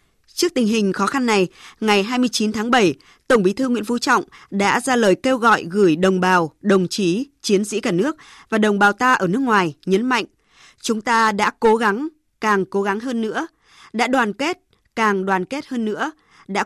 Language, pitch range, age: Vietnamese, 195-255 Hz, 20-39